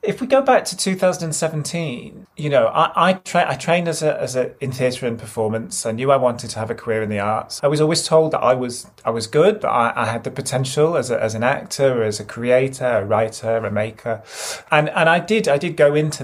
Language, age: English, 30-49